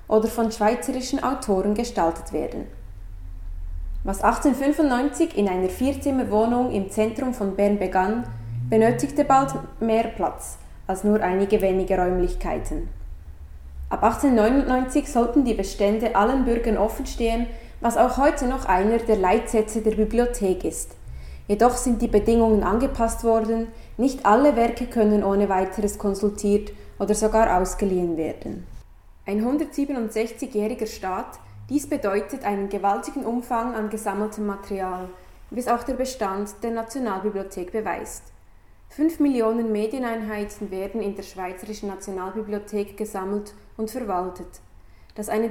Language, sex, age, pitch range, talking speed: French, female, 20-39, 190-235 Hz, 125 wpm